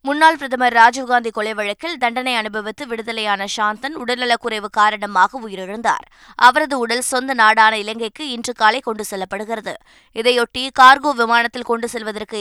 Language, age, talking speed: Tamil, 20-39, 125 wpm